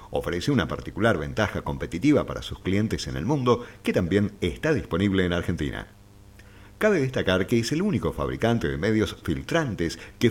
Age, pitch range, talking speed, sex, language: 50-69, 90-125 Hz, 165 wpm, male, Spanish